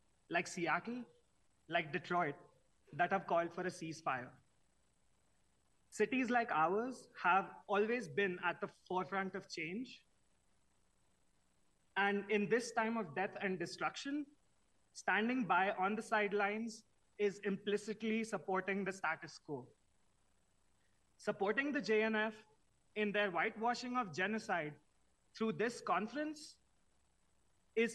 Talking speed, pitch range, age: 110 wpm, 180-225 Hz, 30-49